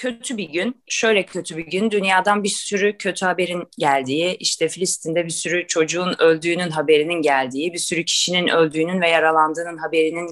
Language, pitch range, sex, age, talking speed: Turkish, 170-215 Hz, female, 30-49, 165 wpm